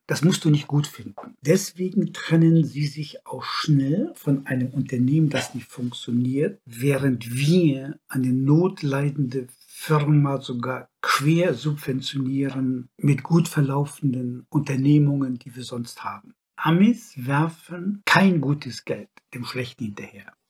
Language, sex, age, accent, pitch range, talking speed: German, male, 60-79, German, 135-165 Hz, 125 wpm